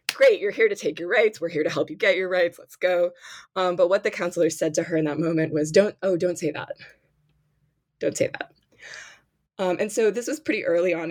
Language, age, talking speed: English, 20-39, 245 wpm